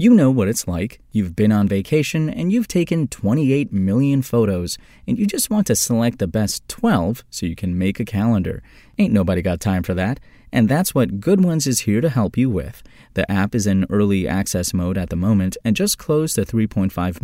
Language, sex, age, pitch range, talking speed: English, male, 30-49, 90-120 Hz, 215 wpm